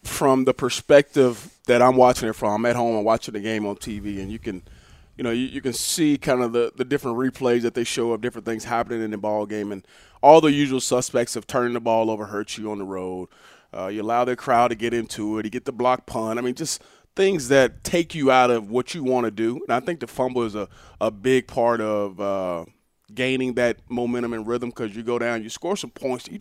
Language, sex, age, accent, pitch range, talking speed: English, male, 30-49, American, 115-130 Hz, 255 wpm